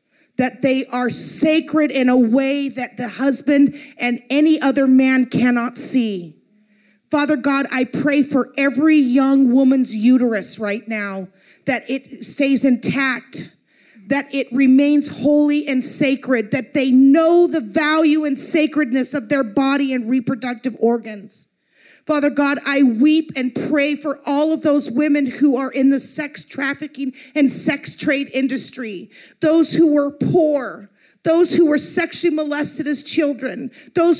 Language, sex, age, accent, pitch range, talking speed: English, female, 40-59, American, 260-310 Hz, 145 wpm